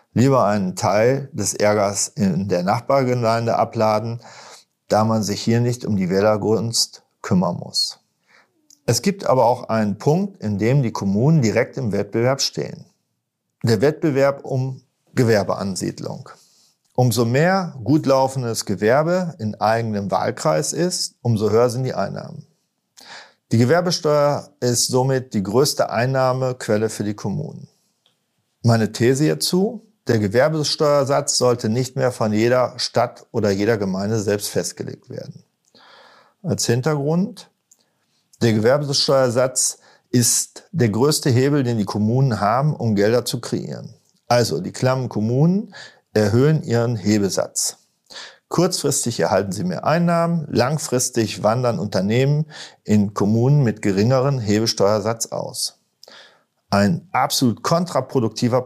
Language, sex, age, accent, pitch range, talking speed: German, male, 50-69, German, 110-145 Hz, 120 wpm